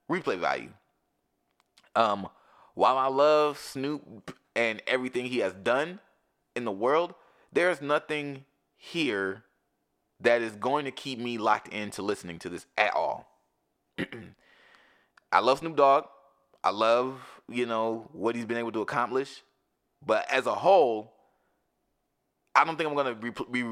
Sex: male